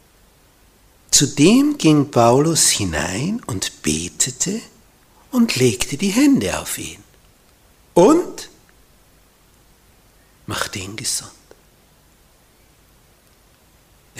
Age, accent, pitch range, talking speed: 60-79, Austrian, 120-190 Hz, 70 wpm